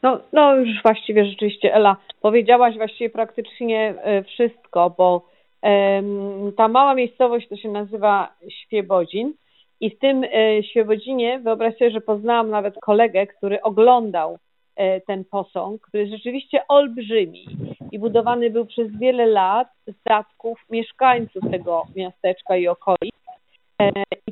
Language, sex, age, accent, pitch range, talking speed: Polish, female, 40-59, native, 190-235 Hz, 130 wpm